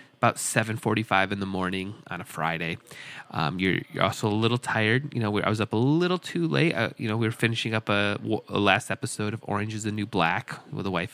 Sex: male